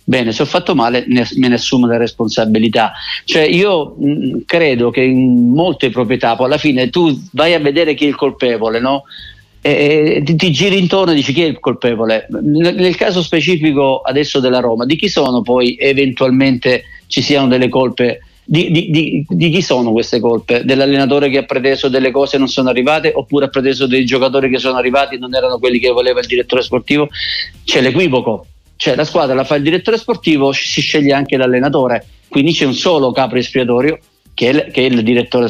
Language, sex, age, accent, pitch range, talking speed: Italian, male, 50-69, native, 125-155 Hz, 200 wpm